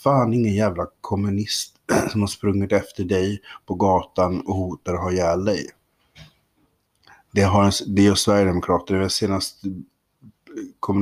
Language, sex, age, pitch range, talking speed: Swedish, male, 30-49, 85-100 Hz, 140 wpm